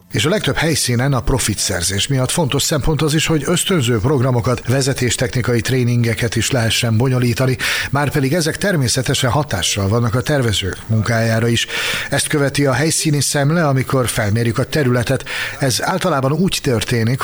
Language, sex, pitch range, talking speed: Hungarian, male, 110-135 Hz, 150 wpm